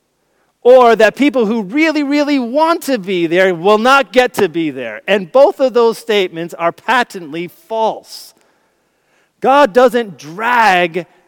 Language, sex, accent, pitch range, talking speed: English, male, American, 170-240 Hz, 145 wpm